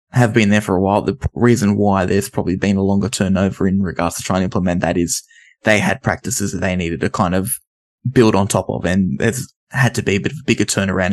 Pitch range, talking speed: 95-110 Hz, 255 wpm